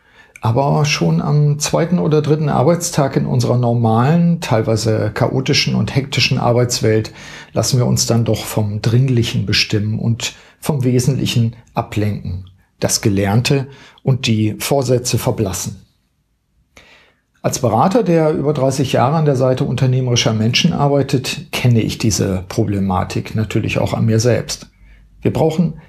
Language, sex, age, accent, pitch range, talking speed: German, male, 50-69, German, 110-140 Hz, 130 wpm